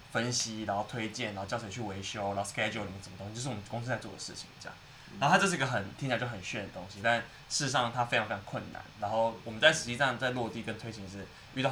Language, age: Chinese, 20-39